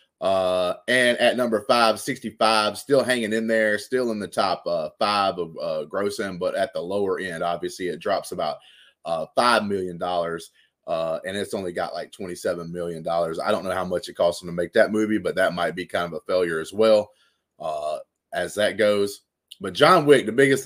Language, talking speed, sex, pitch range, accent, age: English, 205 wpm, male, 100-130 Hz, American, 30-49